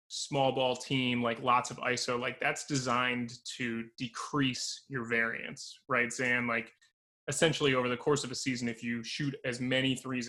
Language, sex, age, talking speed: English, male, 20-39, 175 wpm